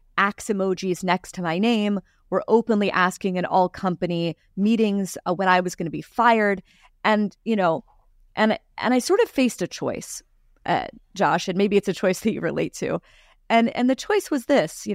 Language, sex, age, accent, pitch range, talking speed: English, female, 30-49, American, 185-235 Hz, 200 wpm